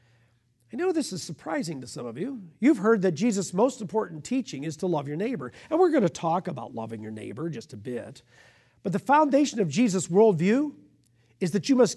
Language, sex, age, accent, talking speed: English, male, 50-69, American, 215 wpm